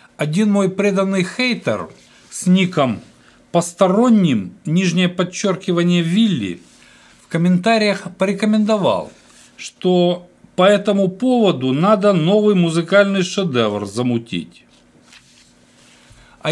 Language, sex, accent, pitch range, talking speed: Russian, male, native, 155-205 Hz, 85 wpm